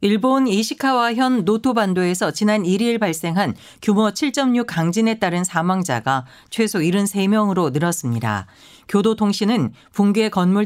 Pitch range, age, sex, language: 150-215 Hz, 50-69, female, Korean